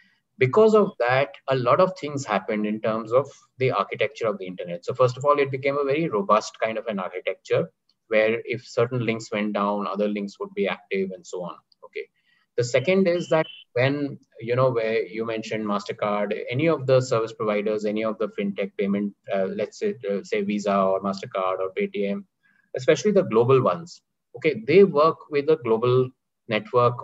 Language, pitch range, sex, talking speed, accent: English, 105-140 Hz, male, 190 wpm, Indian